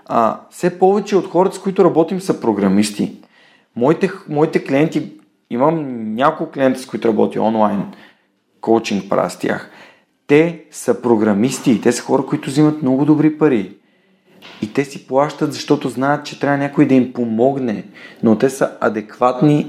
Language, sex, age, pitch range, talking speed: Bulgarian, male, 40-59, 115-155 Hz, 150 wpm